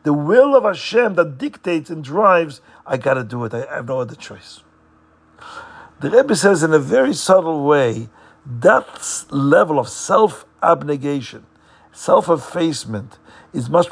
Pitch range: 115-180 Hz